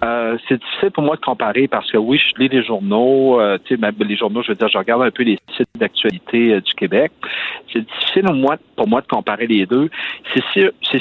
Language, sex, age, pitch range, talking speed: French, male, 50-69, 115-150 Hz, 225 wpm